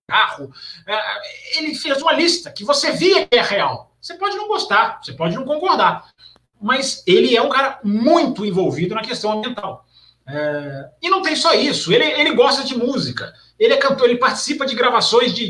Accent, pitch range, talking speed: Brazilian, 195-290 Hz, 180 wpm